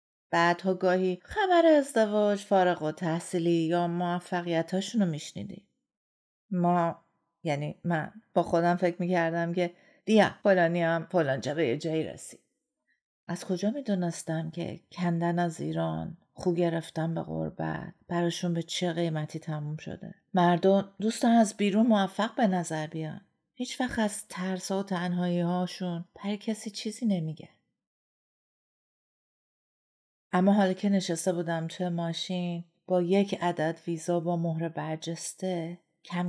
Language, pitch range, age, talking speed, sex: Persian, 170-195 Hz, 40-59, 125 wpm, female